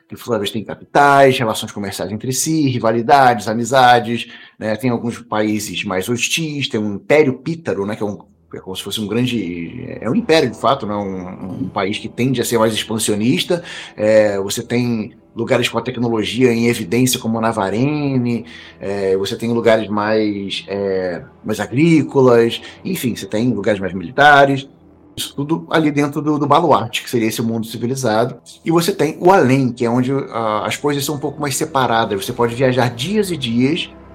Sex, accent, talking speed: male, Brazilian, 185 wpm